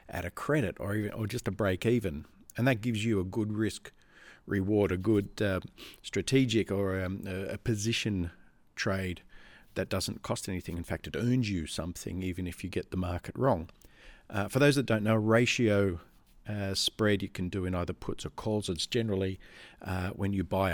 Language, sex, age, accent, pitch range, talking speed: English, male, 50-69, Australian, 95-110 Hz, 195 wpm